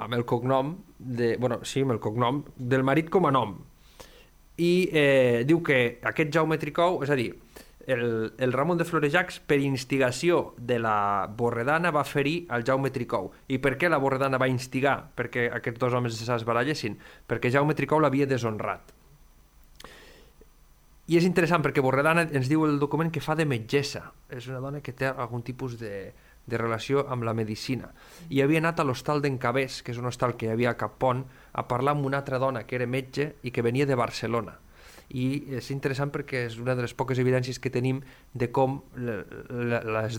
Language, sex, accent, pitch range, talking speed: Spanish, male, Spanish, 120-145 Hz, 185 wpm